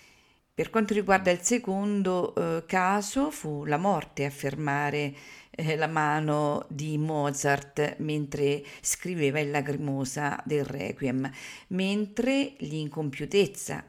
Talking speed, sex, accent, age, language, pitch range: 110 wpm, female, native, 50-69, Italian, 150-190 Hz